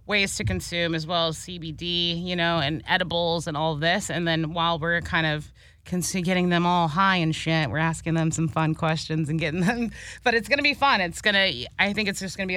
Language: English